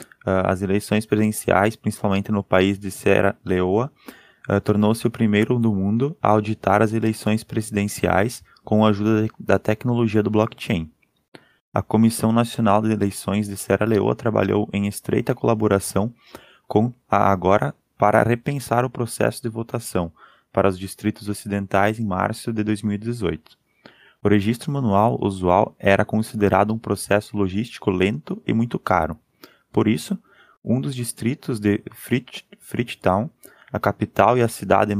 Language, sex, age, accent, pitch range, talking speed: Portuguese, male, 20-39, Brazilian, 100-115 Hz, 135 wpm